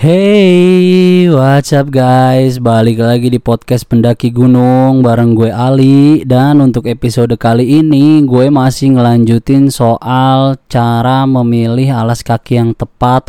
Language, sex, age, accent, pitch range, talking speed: Indonesian, male, 20-39, native, 110-130 Hz, 125 wpm